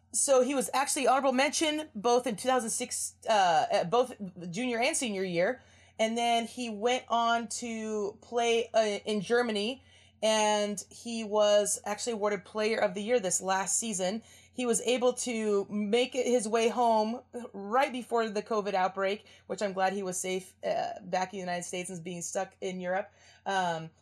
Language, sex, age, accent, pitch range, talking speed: English, female, 30-49, American, 190-235 Hz, 170 wpm